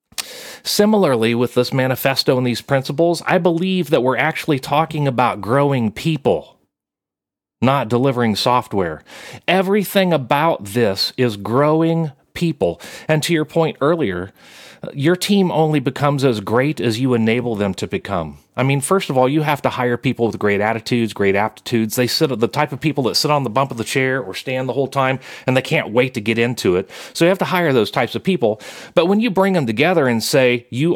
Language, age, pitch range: English, 40-59, 115-155 Hz